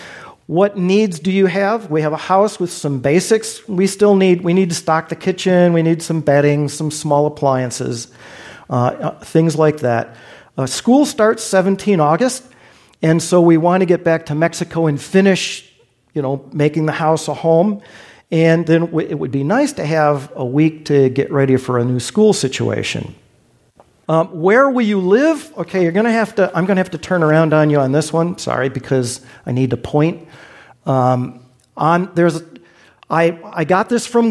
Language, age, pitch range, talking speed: English, 50-69, 150-185 Hz, 190 wpm